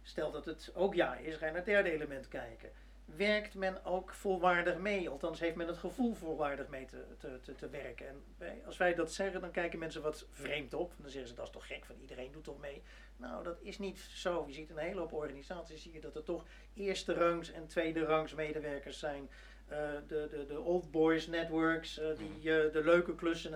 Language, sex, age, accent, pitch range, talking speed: Dutch, male, 40-59, Dutch, 155-185 Hz, 225 wpm